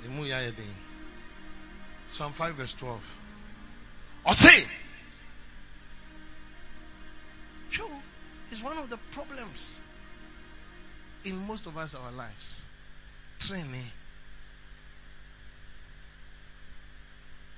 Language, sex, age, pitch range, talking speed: English, male, 50-69, 80-130 Hz, 65 wpm